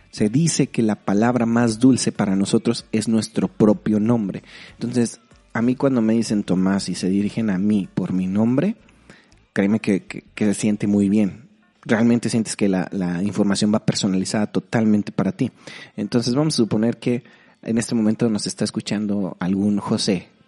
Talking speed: 175 wpm